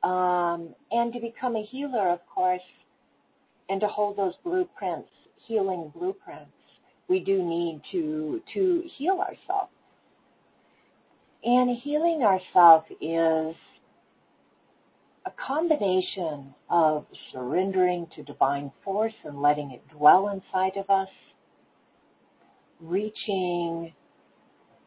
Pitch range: 150-210 Hz